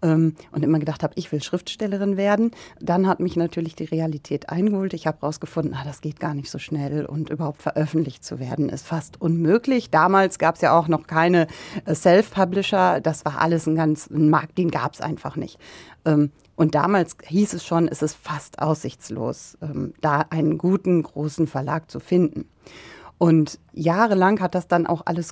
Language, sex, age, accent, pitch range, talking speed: German, female, 40-59, German, 165-205 Hz, 180 wpm